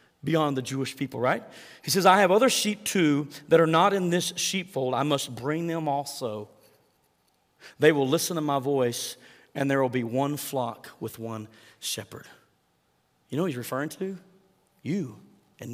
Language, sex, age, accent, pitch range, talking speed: English, male, 40-59, American, 130-170 Hz, 175 wpm